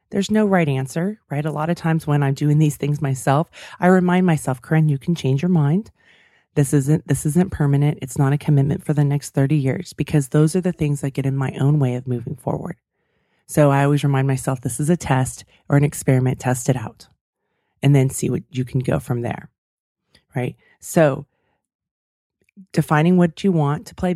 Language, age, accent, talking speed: English, 30-49, American, 210 wpm